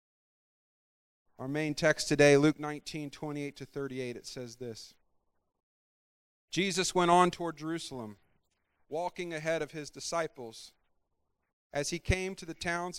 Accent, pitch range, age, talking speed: American, 120-180 Hz, 40-59, 130 wpm